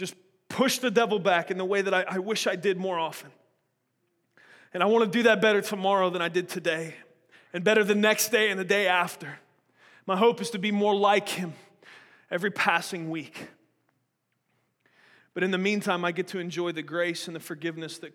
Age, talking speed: 30-49, 200 wpm